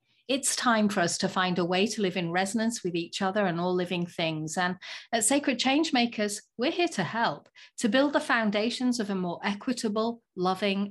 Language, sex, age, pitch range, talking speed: English, female, 40-59, 180-240 Hz, 200 wpm